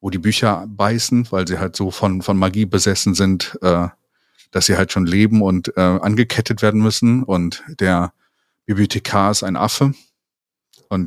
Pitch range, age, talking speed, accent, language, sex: 95-120 Hz, 40-59, 170 wpm, German, German, male